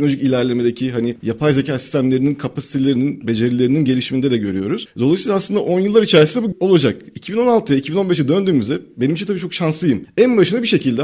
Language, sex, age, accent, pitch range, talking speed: Turkish, male, 40-59, native, 130-185 Hz, 165 wpm